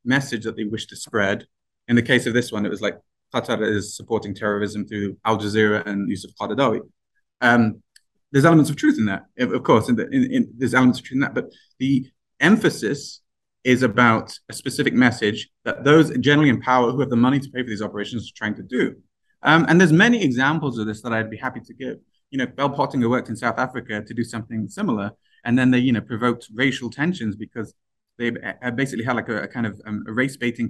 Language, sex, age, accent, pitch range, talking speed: English, male, 20-39, British, 110-135 Hz, 215 wpm